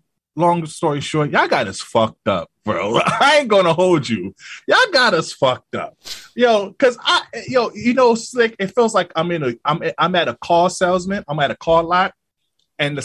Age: 20-39